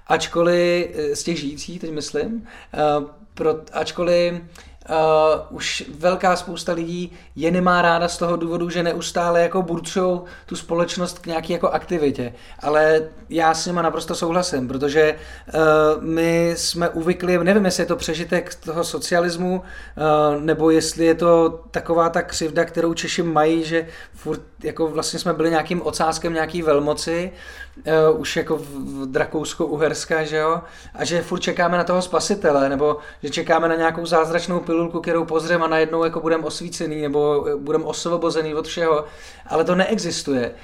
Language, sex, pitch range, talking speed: Czech, male, 155-175 Hz, 150 wpm